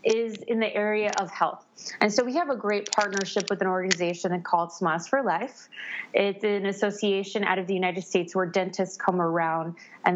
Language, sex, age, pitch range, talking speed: English, female, 20-39, 185-220 Hz, 195 wpm